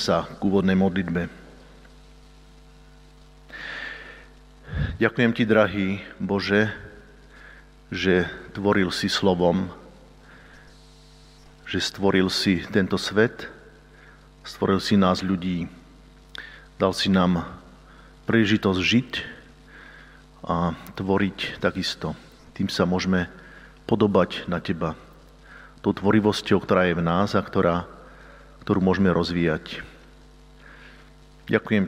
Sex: male